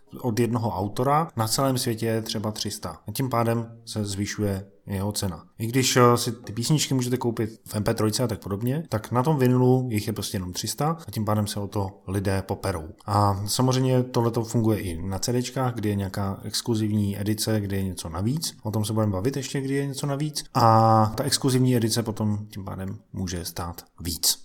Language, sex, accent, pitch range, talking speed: Czech, male, native, 105-125 Hz, 200 wpm